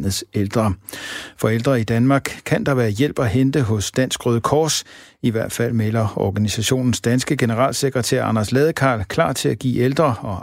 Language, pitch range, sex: Danish, 110-135 Hz, male